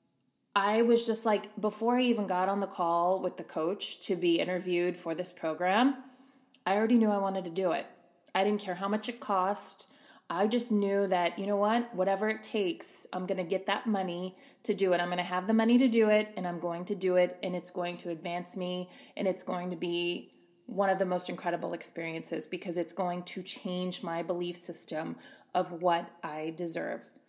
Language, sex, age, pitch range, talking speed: English, female, 20-39, 175-210 Hz, 215 wpm